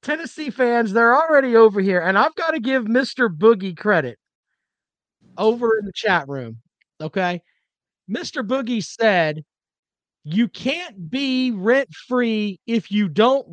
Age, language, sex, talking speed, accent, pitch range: 40-59, English, male, 135 wpm, American, 200-265 Hz